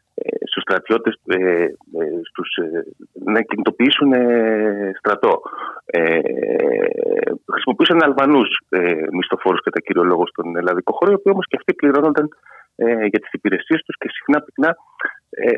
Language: Greek